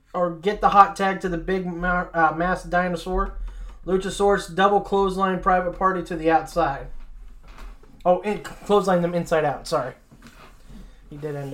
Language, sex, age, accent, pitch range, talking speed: English, male, 20-39, American, 160-185 Hz, 155 wpm